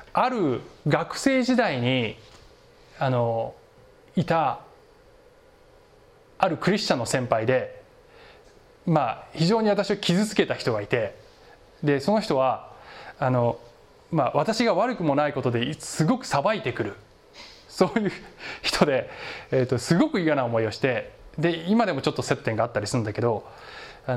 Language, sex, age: Japanese, male, 20-39